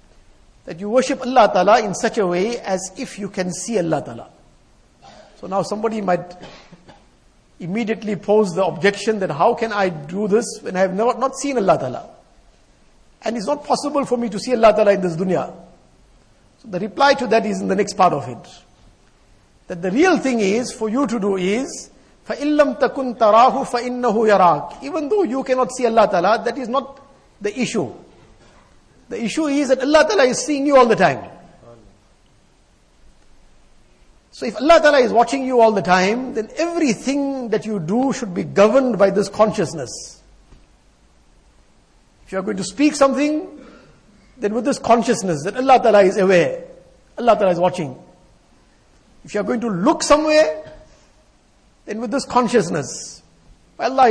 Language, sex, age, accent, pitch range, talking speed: English, male, 50-69, Indian, 185-260 Hz, 170 wpm